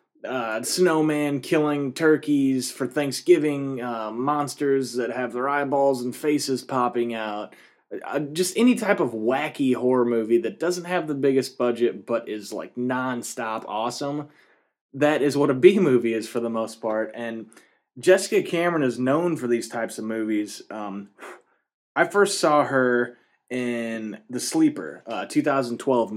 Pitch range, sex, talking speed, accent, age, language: 115-145 Hz, male, 150 wpm, American, 20-39, English